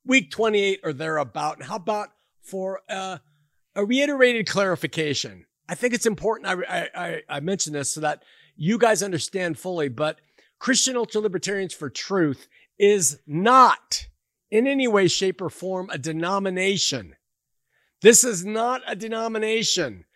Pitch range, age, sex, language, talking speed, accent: 170-225 Hz, 50-69, male, English, 140 wpm, American